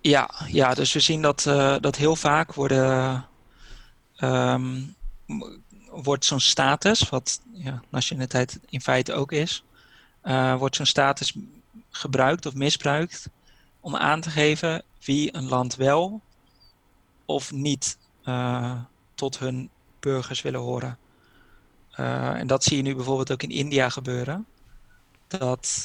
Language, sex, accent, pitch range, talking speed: Dutch, male, Dutch, 125-145 Hz, 135 wpm